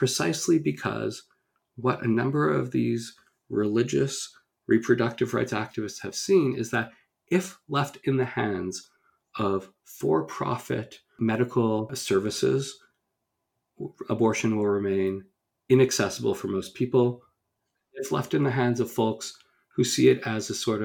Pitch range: 105-125 Hz